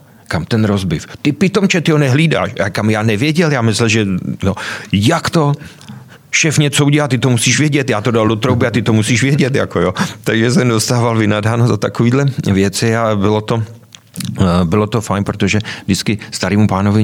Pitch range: 95-120 Hz